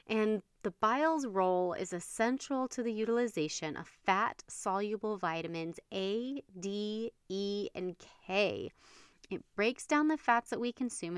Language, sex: English, female